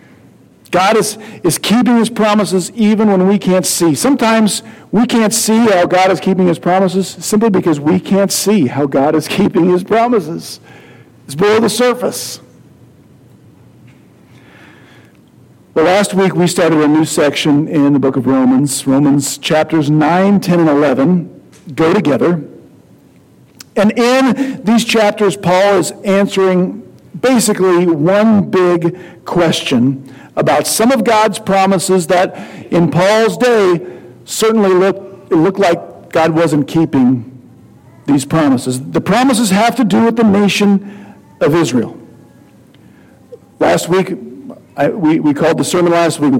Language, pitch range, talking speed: English, 160-210 Hz, 140 wpm